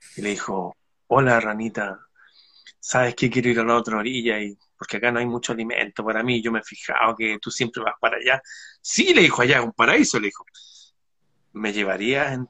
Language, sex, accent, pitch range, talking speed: Spanish, male, Argentinian, 120-175 Hz, 210 wpm